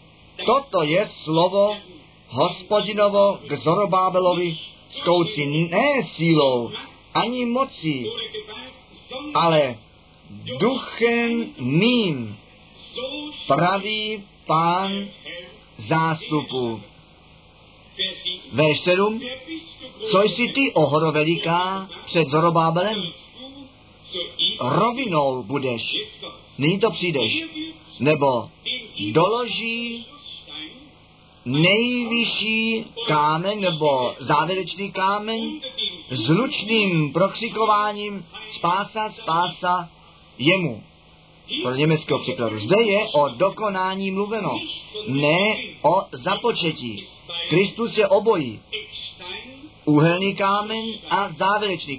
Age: 50-69